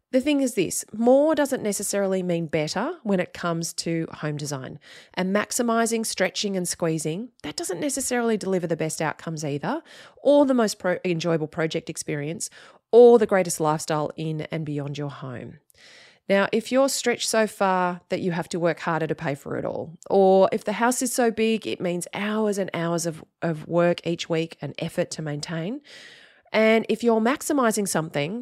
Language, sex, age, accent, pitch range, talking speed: English, female, 30-49, Australian, 160-225 Hz, 180 wpm